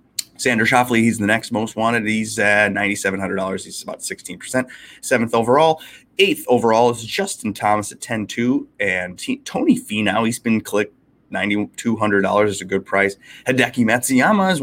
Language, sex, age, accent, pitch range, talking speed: English, male, 20-39, American, 105-130 Hz, 155 wpm